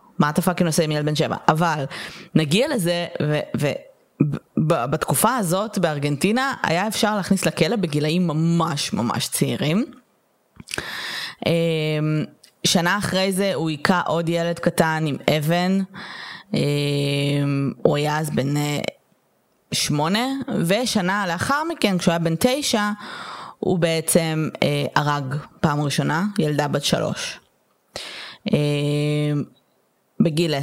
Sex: female